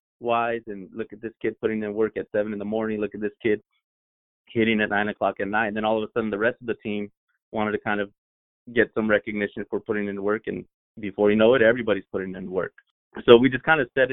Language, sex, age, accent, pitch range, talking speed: English, male, 30-49, American, 105-115 Hz, 260 wpm